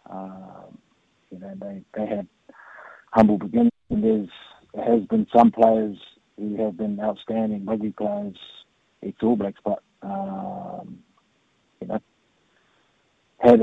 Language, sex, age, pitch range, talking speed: English, male, 30-49, 105-120 Hz, 125 wpm